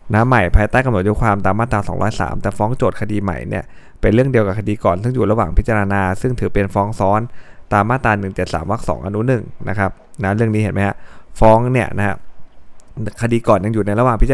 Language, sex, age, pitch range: Thai, male, 20-39, 100-115 Hz